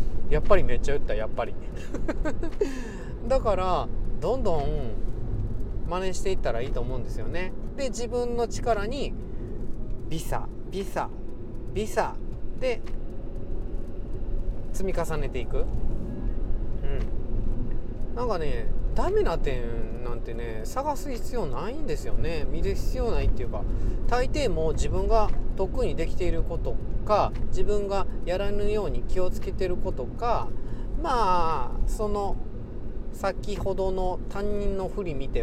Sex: male